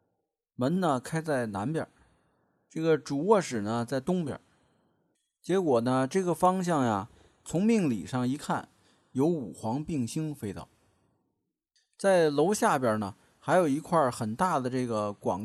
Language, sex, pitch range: Chinese, male, 120-180 Hz